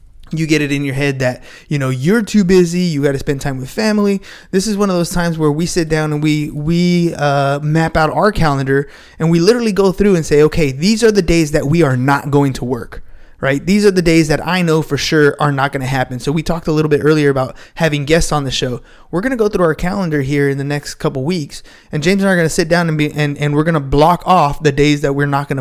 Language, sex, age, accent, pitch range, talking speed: English, male, 20-39, American, 145-185 Hz, 285 wpm